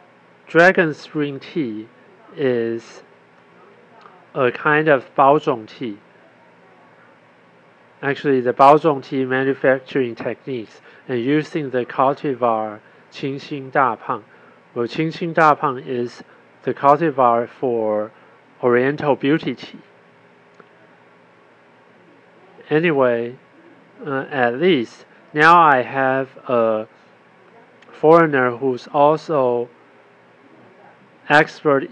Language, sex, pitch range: Chinese, male, 120-150 Hz